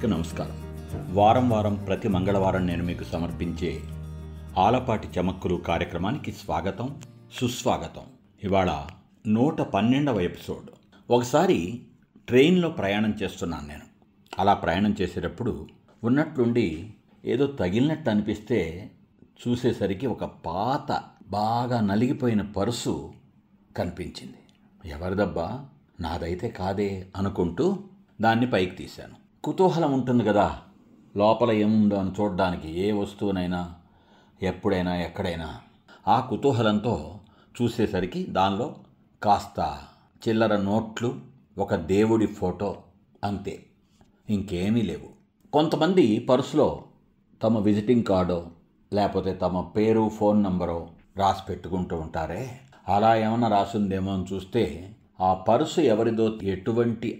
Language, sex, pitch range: Telugu, male, 90-115 Hz